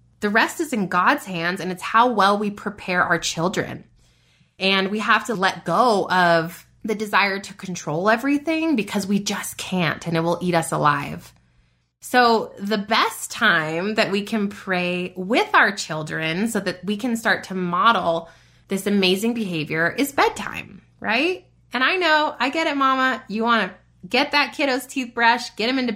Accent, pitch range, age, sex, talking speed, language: American, 175-235 Hz, 20-39, female, 180 wpm, English